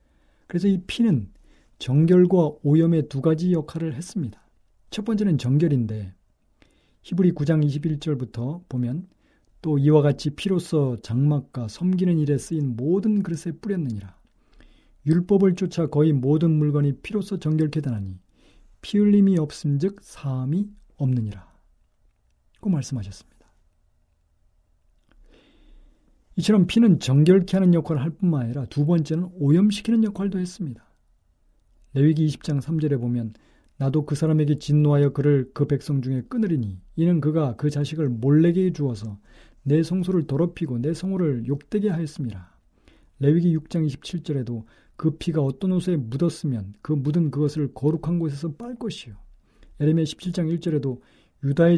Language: Korean